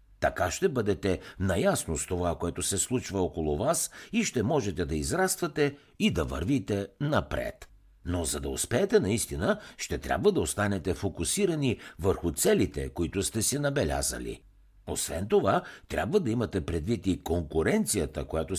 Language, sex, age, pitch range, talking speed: Bulgarian, male, 60-79, 80-120 Hz, 145 wpm